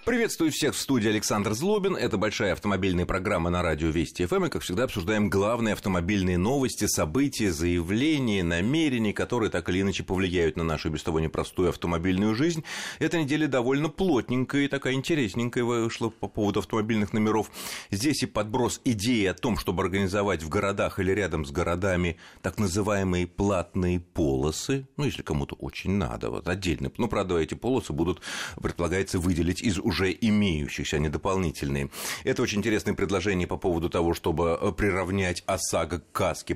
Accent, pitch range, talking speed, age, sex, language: native, 85-110 Hz, 160 wpm, 30-49, male, Russian